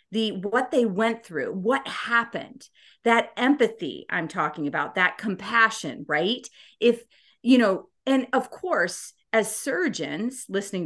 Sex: female